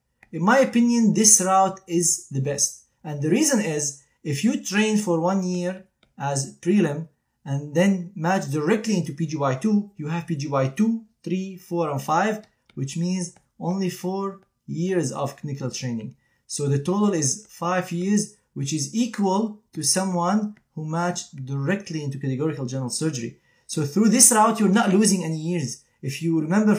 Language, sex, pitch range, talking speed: English, male, 145-185 Hz, 160 wpm